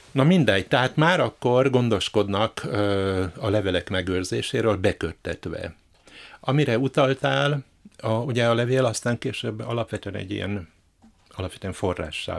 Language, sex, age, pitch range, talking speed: Hungarian, male, 60-79, 90-110 Hz, 100 wpm